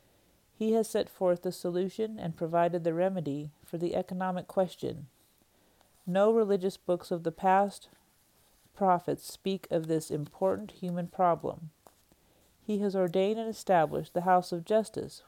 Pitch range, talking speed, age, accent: 165-195 Hz, 140 wpm, 50-69, American